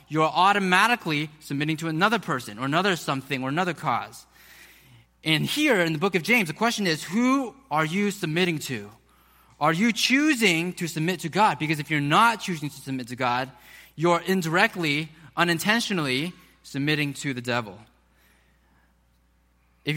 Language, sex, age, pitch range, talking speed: English, male, 20-39, 140-185 Hz, 155 wpm